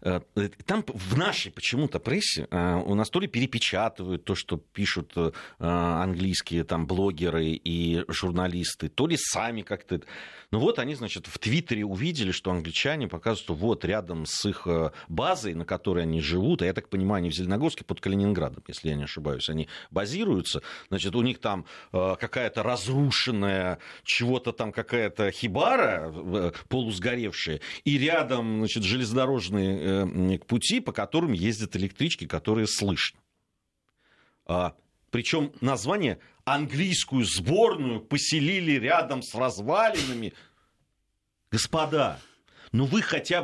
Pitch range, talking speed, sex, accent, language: 90-140 Hz, 130 wpm, male, native, Russian